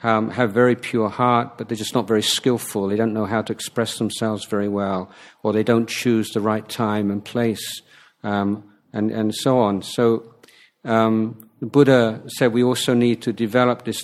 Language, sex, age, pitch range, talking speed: English, male, 50-69, 105-125 Hz, 190 wpm